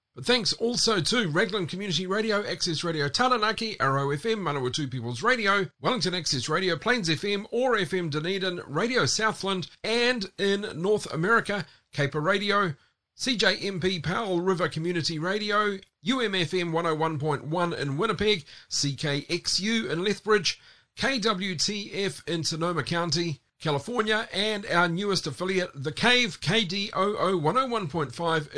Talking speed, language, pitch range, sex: 115 wpm, English, 150-205 Hz, male